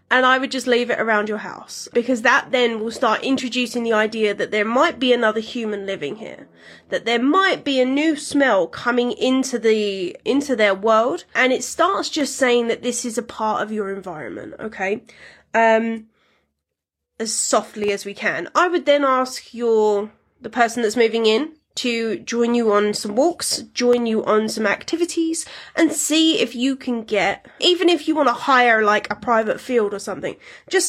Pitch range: 215-270 Hz